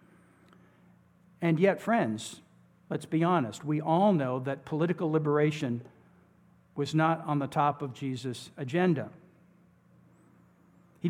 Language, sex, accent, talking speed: English, male, American, 115 wpm